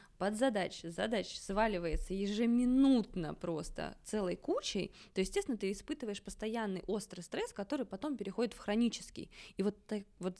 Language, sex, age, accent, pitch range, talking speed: Russian, female, 20-39, native, 195-250 Hz, 135 wpm